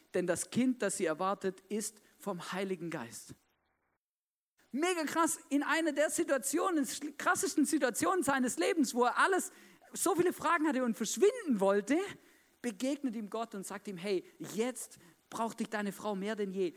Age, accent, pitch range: 50-69, German, 170-250 Hz